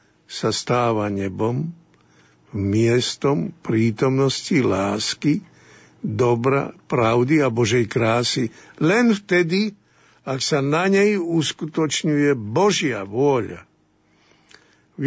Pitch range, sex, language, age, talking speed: 110-155 Hz, male, Slovak, 60-79, 85 wpm